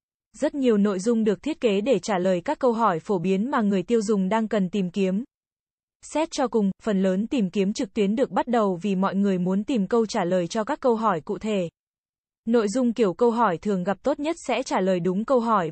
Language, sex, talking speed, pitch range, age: Vietnamese, female, 245 wpm, 195-245 Hz, 20-39